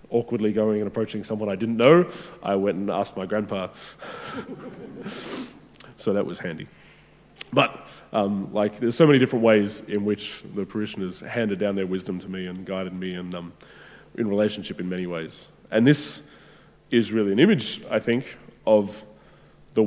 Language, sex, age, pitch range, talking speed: English, male, 20-39, 100-115 Hz, 170 wpm